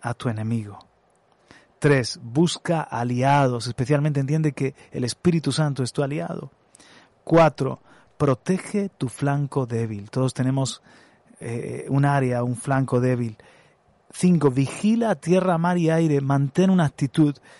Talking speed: 125 wpm